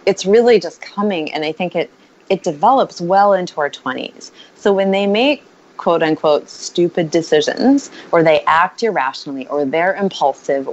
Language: English